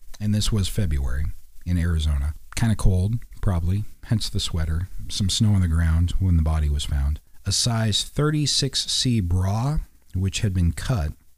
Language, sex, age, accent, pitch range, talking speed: English, male, 40-59, American, 80-110 Hz, 165 wpm